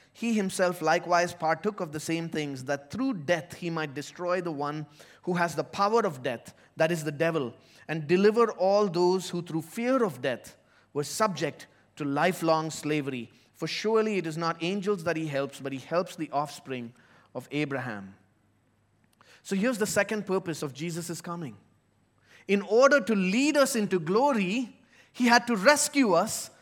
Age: 20-39